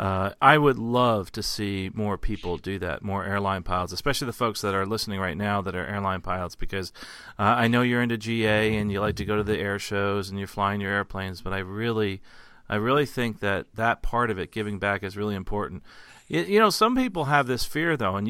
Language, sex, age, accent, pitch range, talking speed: English, male, 40-59, American, 100-120 Hz, 235 wpm